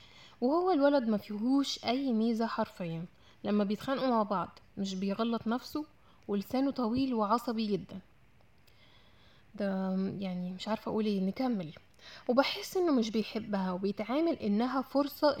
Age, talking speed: 10-29, 125 wpm